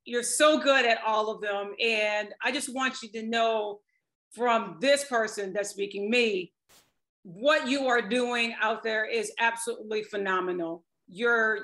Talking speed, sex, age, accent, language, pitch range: 155 wpm, female, 40-59, American, English, 200-235 Hz